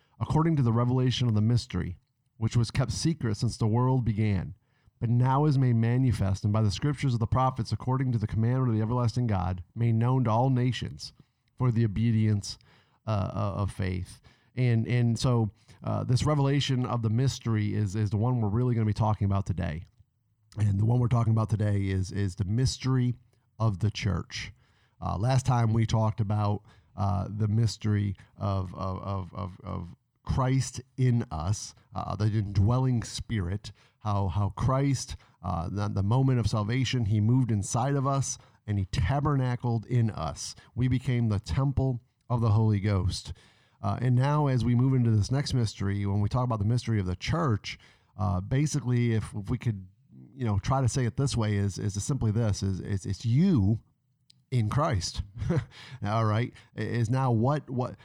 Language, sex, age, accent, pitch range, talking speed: English, male, 40-59, American, 105-125 Hz, 185 wpm